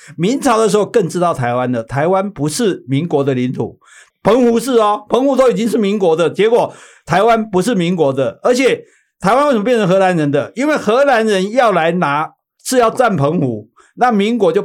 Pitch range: 145-225 Hz